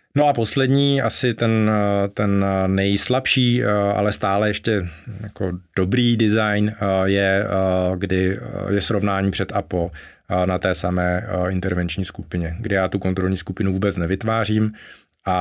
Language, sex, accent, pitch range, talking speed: Czech, male, native, 90-110 Hz, 130 wpm